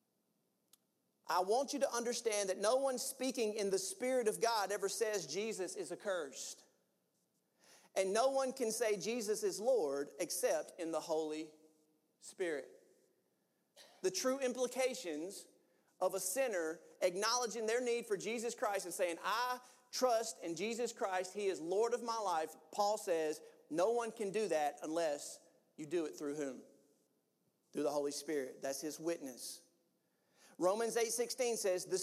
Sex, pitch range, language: male, 175-250 Hz, English